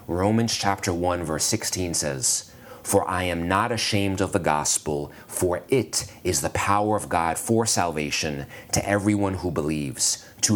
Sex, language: male, English